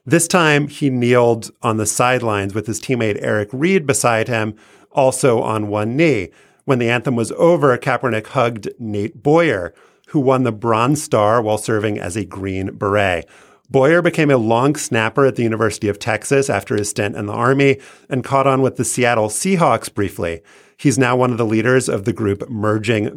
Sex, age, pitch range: male, 30-49, 105-135 Hz